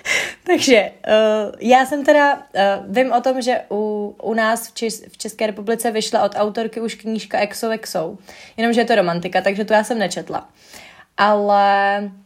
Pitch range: 200-235 Hz